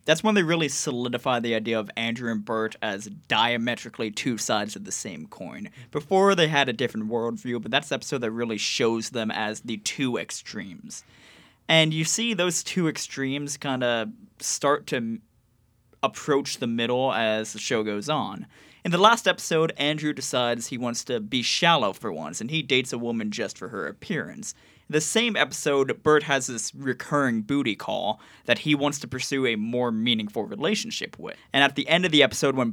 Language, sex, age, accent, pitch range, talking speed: English, male, 20-39, American, 120-155 Hz, 190 wpm